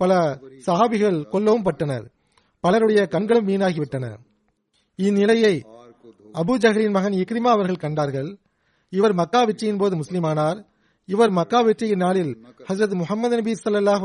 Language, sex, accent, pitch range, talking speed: Tamil, male, native, 165-215 Hz, 105 wpm